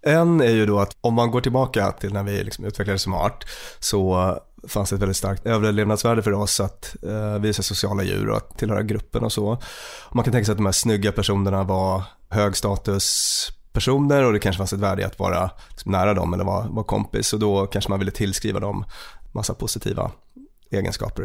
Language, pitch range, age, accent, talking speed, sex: English, 100-110 Hz, 30-49, Swedish, 195 wpm, male